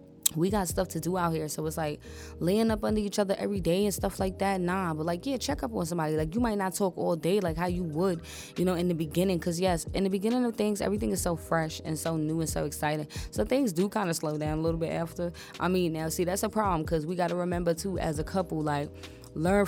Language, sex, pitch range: English, female, 160-200 Hz